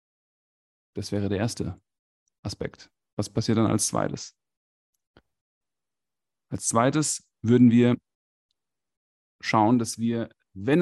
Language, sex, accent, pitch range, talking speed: German, male, German, 100-130 Hz, 100 wpm